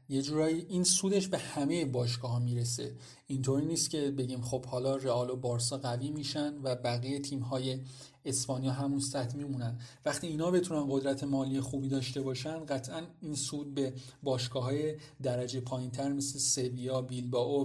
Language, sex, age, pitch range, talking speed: Persian, male, 40-59, 130-150 Hz, 155 wpm